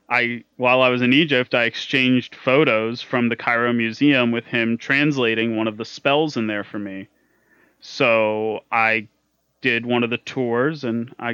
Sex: male